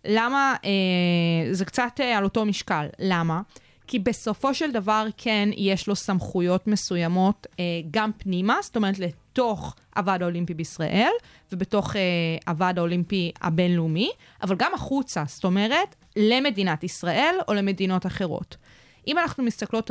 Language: Hebrew